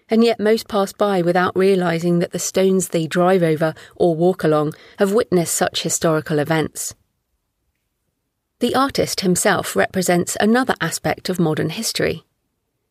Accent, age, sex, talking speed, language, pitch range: British, 40-59, female, 140 wpm, English, 170-210 Hz